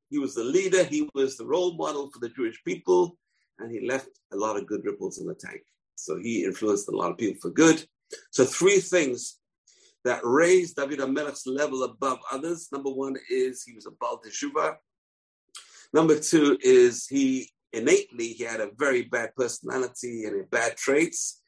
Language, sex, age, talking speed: English, male, 50-69, 180 wpm